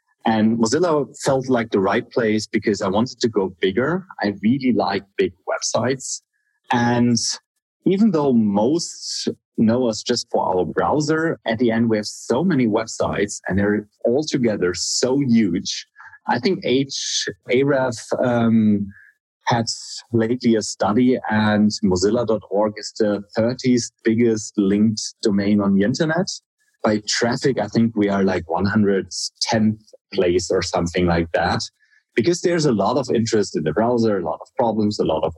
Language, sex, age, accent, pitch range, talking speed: English, male, 30-49, German, 100-130 Hz, 150 wpm